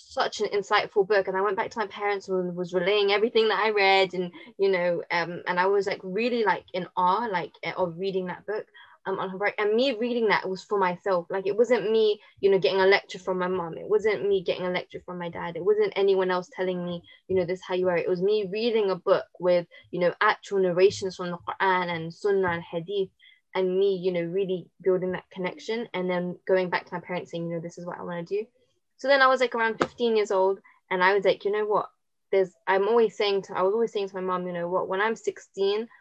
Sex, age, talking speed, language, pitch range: female, 10-29, 260 wpm, English, 180-225 Hz